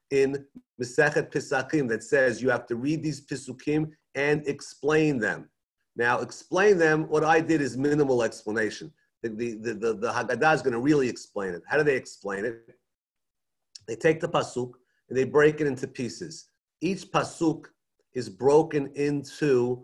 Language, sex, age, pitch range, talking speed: English, male, 40-59, 130-165 Hz, 165 wpm